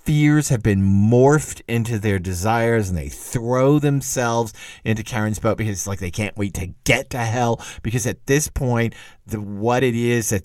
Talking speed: 185 wpm